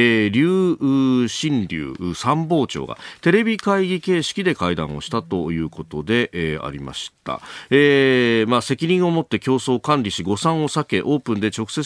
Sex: male